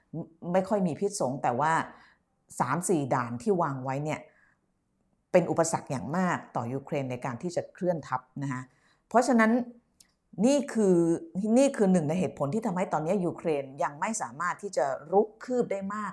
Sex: female